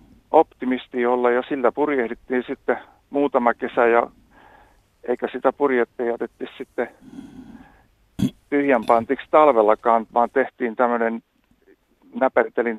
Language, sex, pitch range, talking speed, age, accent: Finnish, male, 115-140 Hz, 100 wpm, 50-69, native